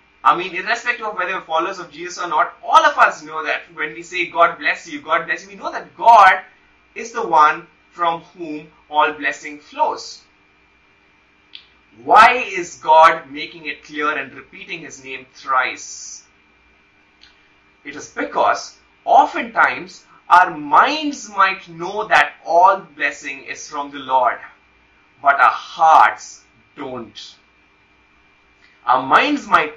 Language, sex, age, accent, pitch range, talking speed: English, male, 30-49, Indian, 150-195 Hz, 145 wpm